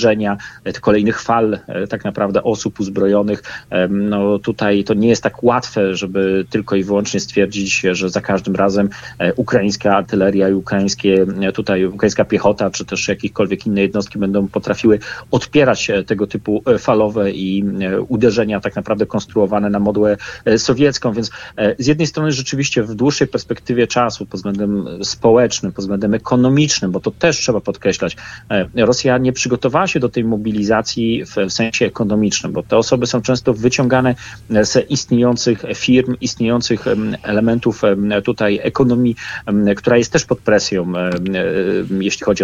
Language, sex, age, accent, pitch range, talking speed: Polish, male, 40-59, native, 100-125 Hz, 135 wpm